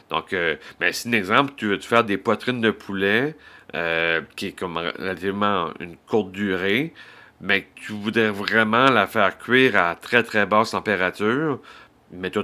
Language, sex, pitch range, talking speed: French, male, 95-115 Hz, 175 wpm